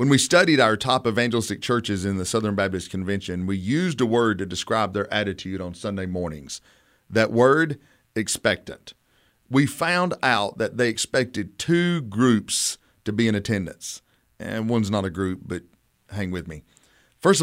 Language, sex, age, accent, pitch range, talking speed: English, male, 40-59, American, 100-135 Hz, 165 wpm